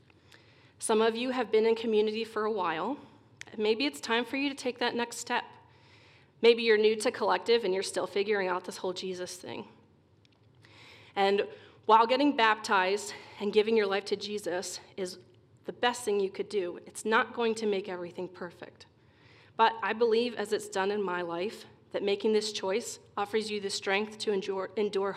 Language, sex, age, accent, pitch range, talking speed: English, female, 30-49, American, 175-220 Hz, 185 wpm